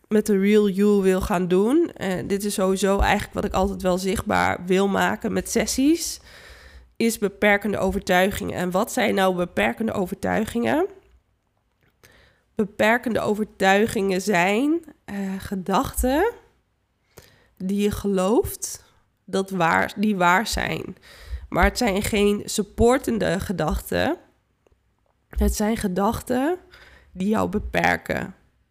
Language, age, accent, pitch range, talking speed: Dutch, 20-39, Dutch, 190-230 Hz, 115 wpm